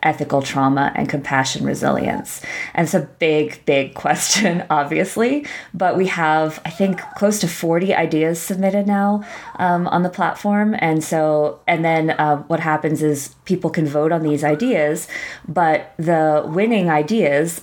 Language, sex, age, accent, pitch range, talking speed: English, female, 20-39, American, 145-170 Hz, 155 wpm